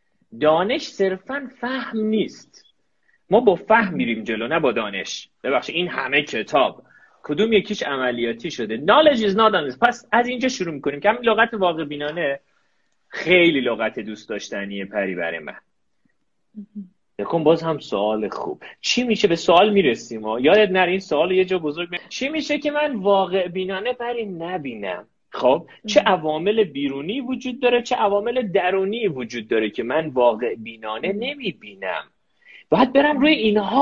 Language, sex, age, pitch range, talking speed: Persian, male, 30-49, 140-220 Hz, 150 wpm